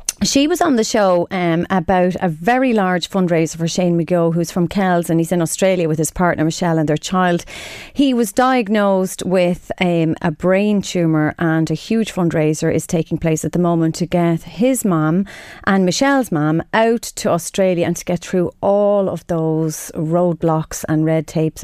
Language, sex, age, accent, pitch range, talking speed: English, female, 30-49, Irish, 165-225 Hz, 185 wpm